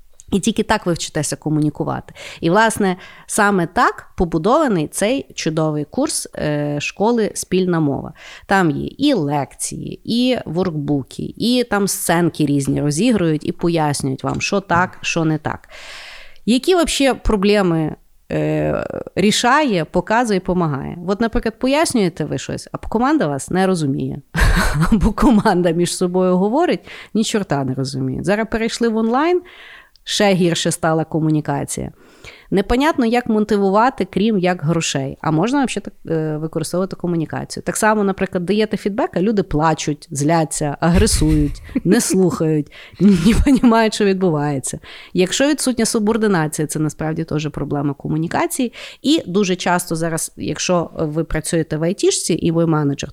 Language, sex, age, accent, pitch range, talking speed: Ukrainian, female, 30-49, native, 155-220 Hz, 135 wpm